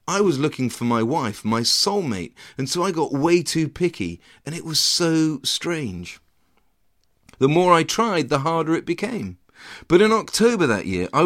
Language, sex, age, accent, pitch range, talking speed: English, male, 40-59, British, 120-175 Hz, 180 wpm